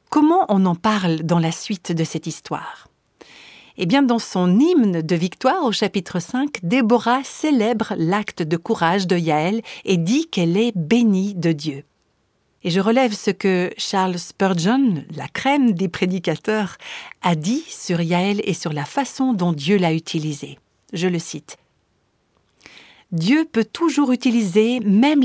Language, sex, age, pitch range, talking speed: French, female, 50-69, 170-235 Hz, 155 wpm